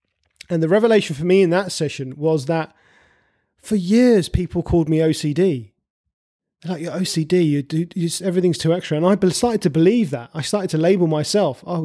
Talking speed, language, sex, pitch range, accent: 185 wpm, English, male, 145-185 Hz, British